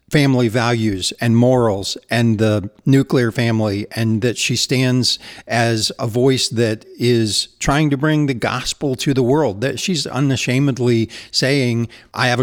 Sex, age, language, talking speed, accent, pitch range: male, 50-69, English, 150 wpm, American, 115-135 Hz